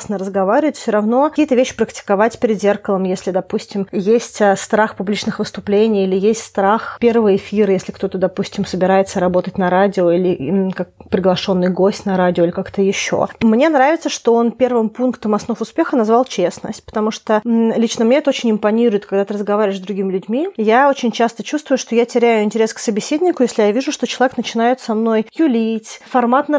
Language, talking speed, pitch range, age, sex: Russian, 180 wpm, 205-240 Hz, 20-39, female